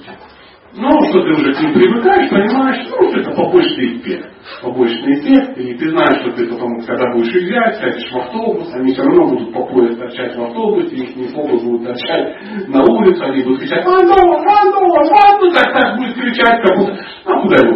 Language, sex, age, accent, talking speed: Russian, male, 40-59, native, 205 wpm